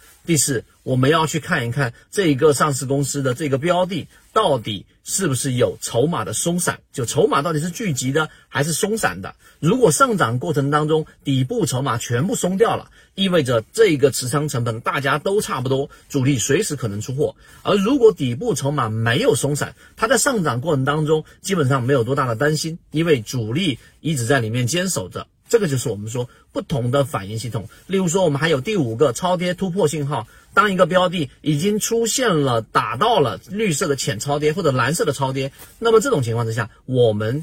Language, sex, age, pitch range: Chinese, male, 40-59, 125-160 Hz